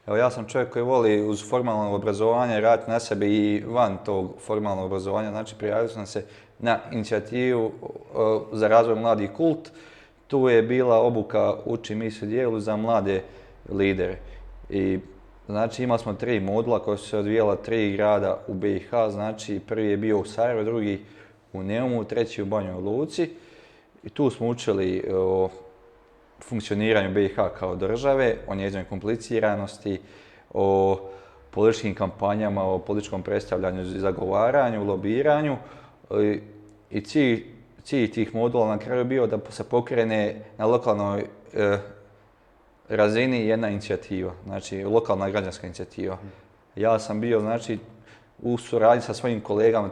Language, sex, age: Croatian, male, 30-49